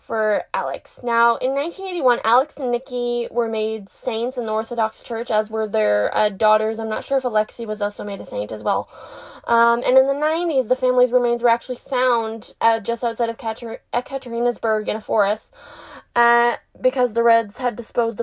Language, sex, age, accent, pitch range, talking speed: English, female, 20-39, American, 220-255 Hz, 195 wpm